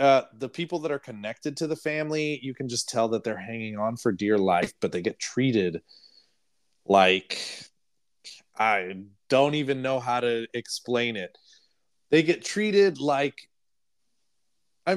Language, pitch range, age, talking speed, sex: English, 110-145 Hz, 30-49, 150 wpm, male